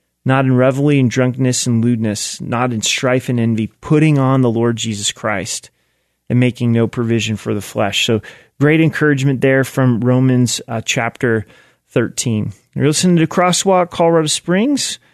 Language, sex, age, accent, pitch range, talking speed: English, male, 30-49, American, 120-150 Hz, 160 wpm